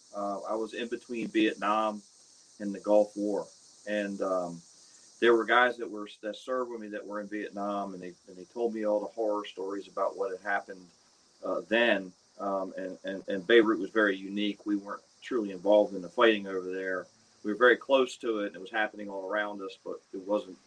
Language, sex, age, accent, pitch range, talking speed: English, male, 40-59, American, 100-115 Hz, 215 wpm